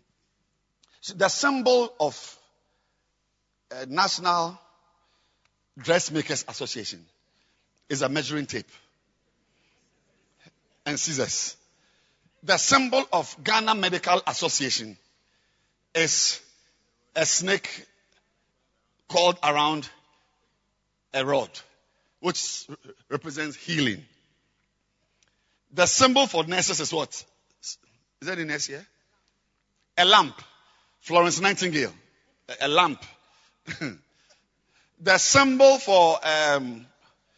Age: 50-69